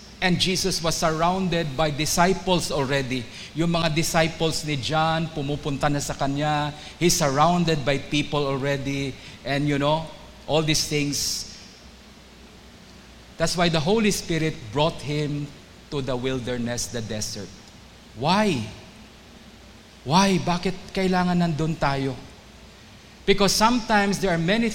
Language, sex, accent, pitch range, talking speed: English, male, Filipino, 135-175 Hz, 120 wpm